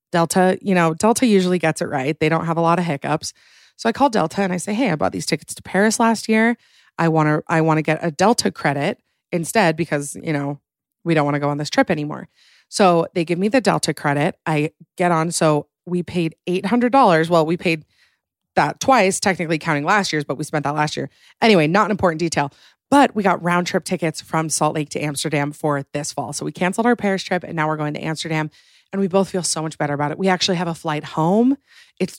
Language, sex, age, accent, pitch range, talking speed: English, female, 20-39, American, 155-190 Hz, 240 wpm